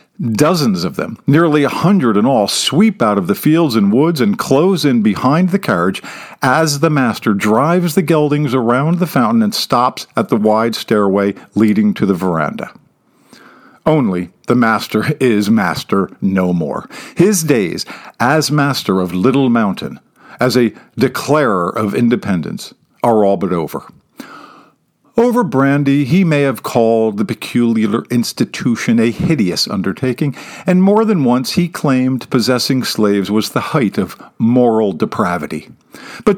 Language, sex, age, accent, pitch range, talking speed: English, male, 50-69, American, 110-175 Hz, 150 wpm